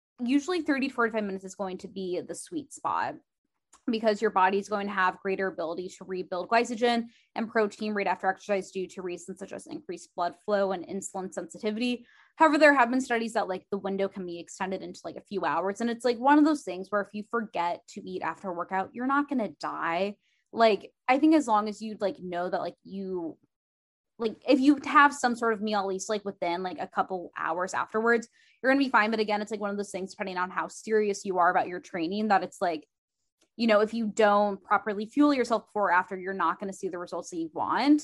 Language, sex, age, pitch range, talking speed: English, female, 20-39, 190-245 Hz, 240 wpm